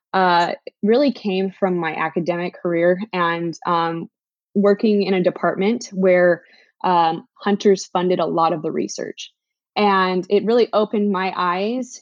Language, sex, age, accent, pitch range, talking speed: English, female, 20-39, American, 175-205 Hz, 145 wpm